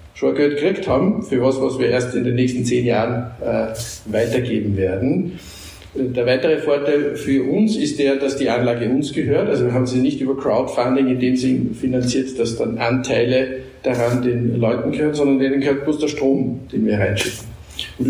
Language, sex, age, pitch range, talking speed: German, male, 50-69, 115-135 Hz, 190 wpm